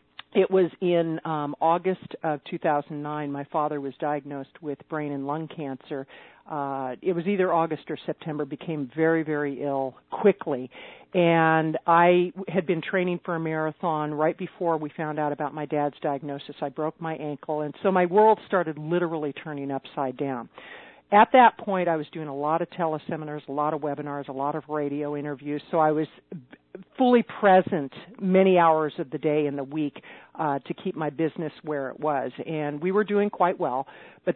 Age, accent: 50-69, American